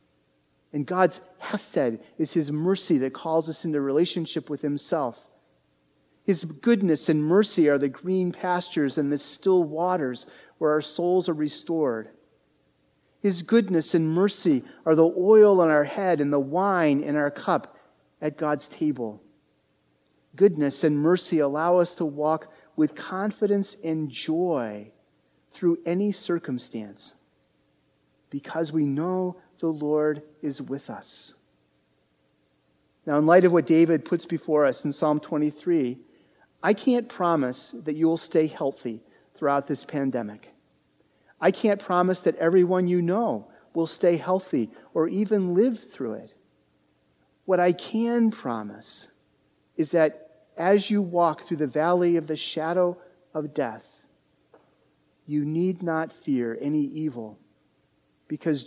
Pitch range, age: 135-180 Hz, 40-59